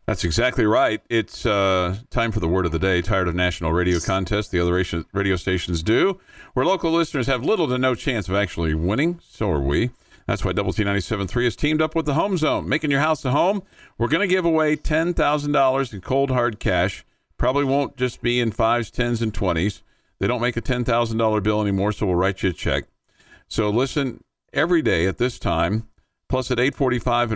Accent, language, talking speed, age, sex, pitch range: American, English, 215 wpm, 50-69, male, 95-130 Hz